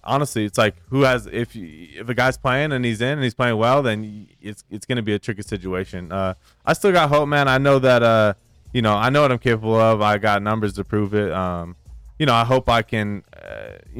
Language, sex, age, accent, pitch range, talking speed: English, male, 20-39, American, 95-120 Hz, 245 wpm